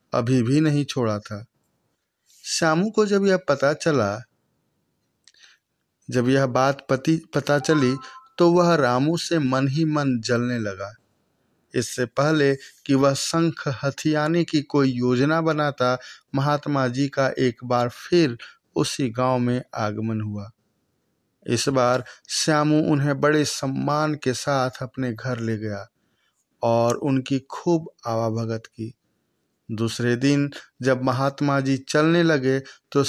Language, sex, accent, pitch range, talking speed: Hindi, male, native, 125-150 Hz, 130 wpm